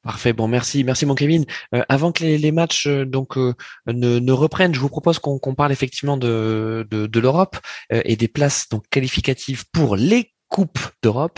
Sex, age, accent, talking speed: male, 20-39, French, 205 wpm